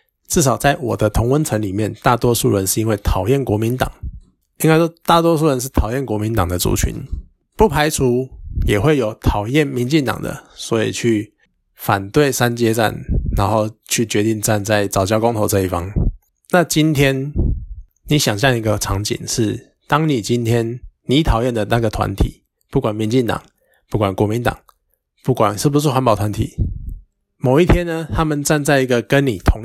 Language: Chinese